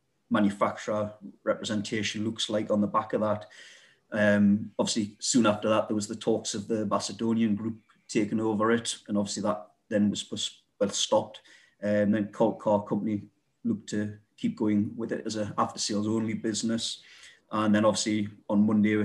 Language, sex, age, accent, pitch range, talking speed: English, male, 30-49, British, 105-115 Hz, 165 wpm